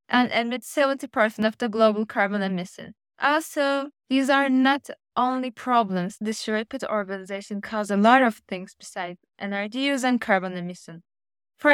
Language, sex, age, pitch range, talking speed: English, female, 10-29, 200-255 Hz, 150 wpm